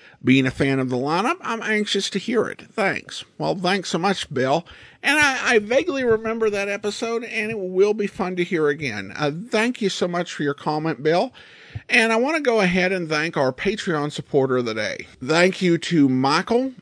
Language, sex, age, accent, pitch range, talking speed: English, male, 50-69, American, 135-195 Hz, 210 wpm